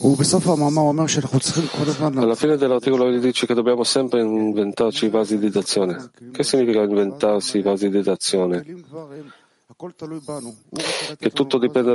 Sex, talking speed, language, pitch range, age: male, 115 wpm, Italian, 105-125 Hz, 40-59